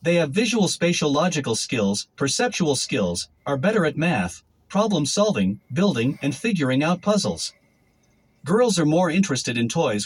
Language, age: English, 50-69